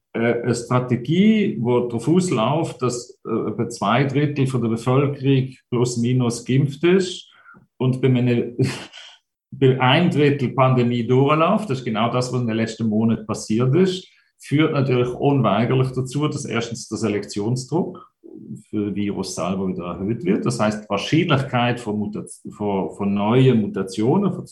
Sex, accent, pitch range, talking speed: male, German, 105-135 Hz, 135 wpm